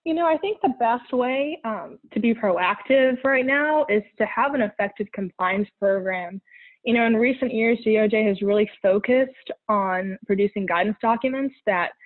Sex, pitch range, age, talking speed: female, 195-250 Hz, 20-39, 170 wpm